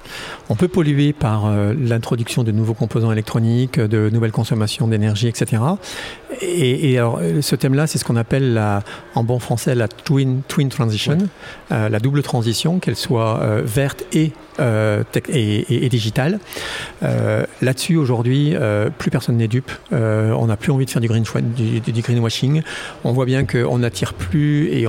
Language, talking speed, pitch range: French, 180 wpm, 115-140 Hz